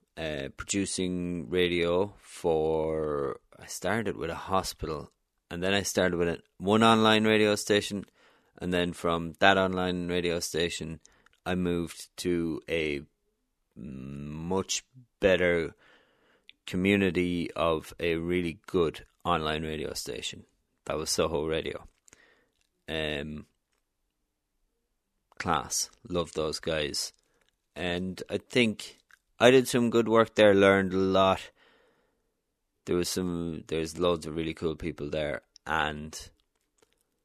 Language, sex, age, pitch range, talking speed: English, male, 30-49, 80-95 Hz, 115 wpm